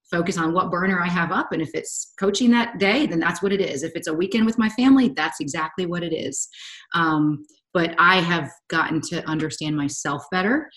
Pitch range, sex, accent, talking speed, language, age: 155-210 Hz, female, American, 215 wpm, English, 30-49